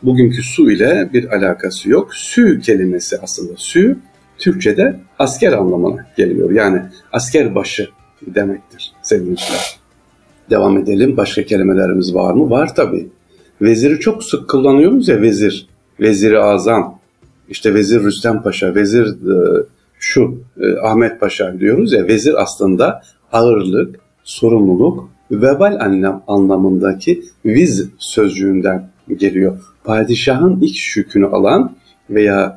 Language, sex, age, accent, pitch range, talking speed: Turkish, male, 60-79, native, 95-130 Hz, 110 wpm